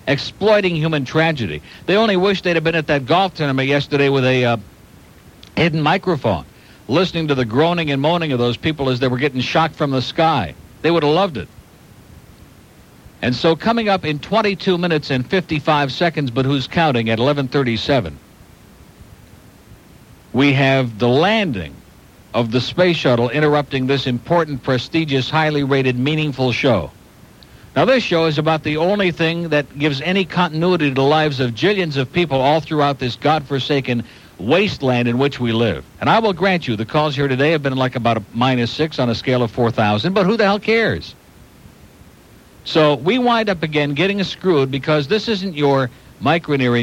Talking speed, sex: 175 wpm, male